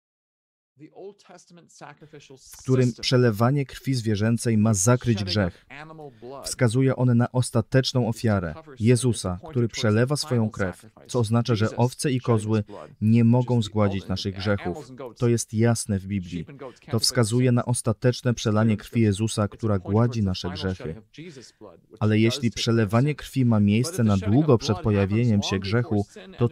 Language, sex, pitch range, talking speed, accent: Polish, male, 105-125 Hz, 130 wpm, native